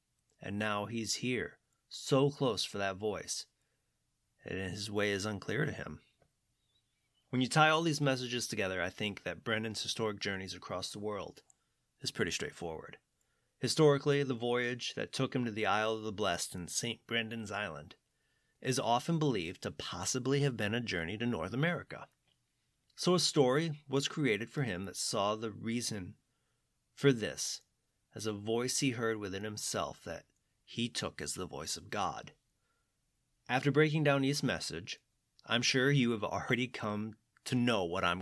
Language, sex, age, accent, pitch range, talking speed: English, male, 30-49, American, 100-130 Hz, 165 wpm